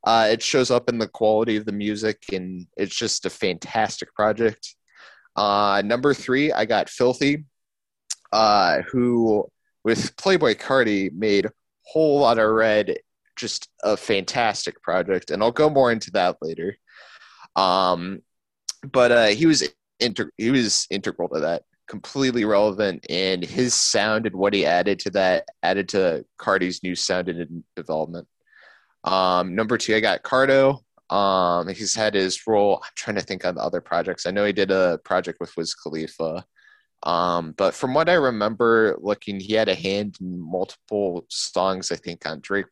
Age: 20-39